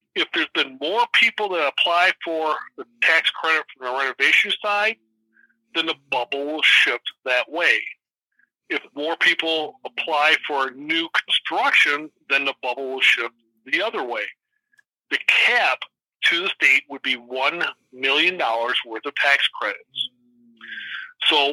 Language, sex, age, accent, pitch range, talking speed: English, male, 60-79, American, 145-230 Hz, 145 wpm